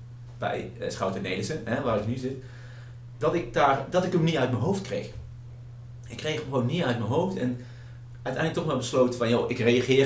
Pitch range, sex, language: 120-125 Hz, male, Dutch